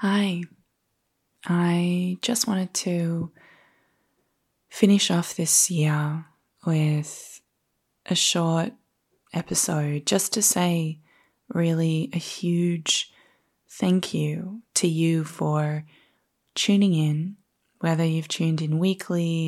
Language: English